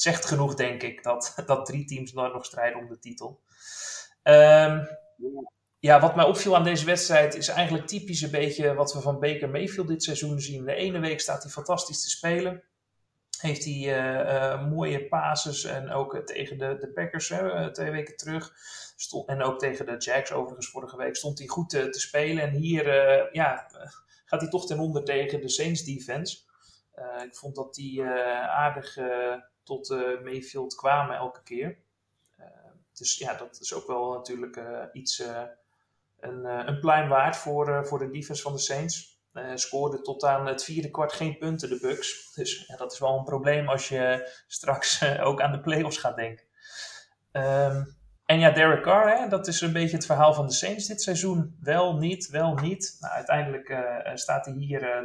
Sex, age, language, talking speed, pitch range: male, 30-49, Dutch, 200 wpm, 130-165 Hz